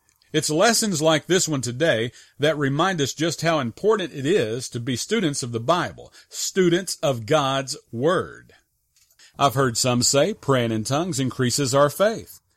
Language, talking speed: English, 160 wpm